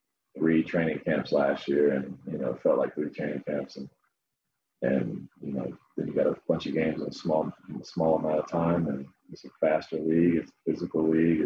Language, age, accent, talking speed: English, 30-49, American, 225 wpm